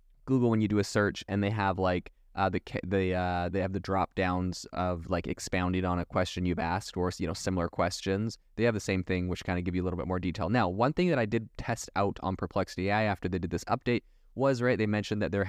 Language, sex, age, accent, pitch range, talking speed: English, male, 20-39, American, 90-110 Hz, 265 wpm